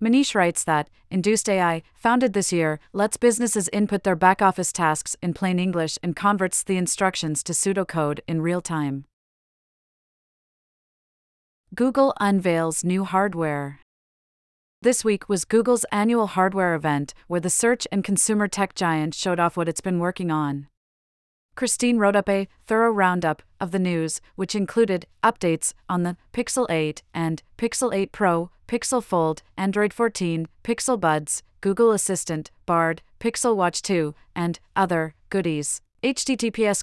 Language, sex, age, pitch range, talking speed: English, female, 30-49, 170-205 Hz, 140 wpm